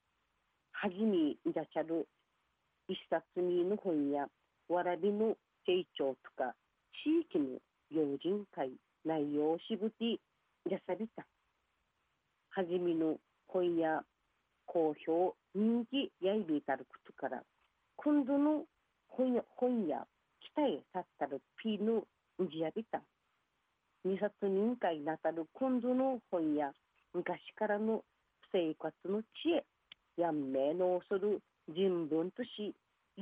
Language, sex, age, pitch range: Japanese, female, 40-59, 165-240 Hz